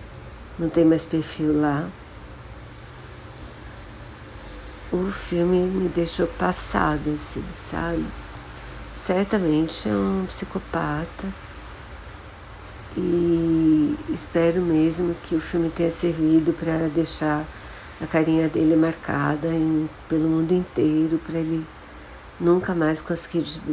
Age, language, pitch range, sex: 50-69, Portuguese, 145-165 Hz, female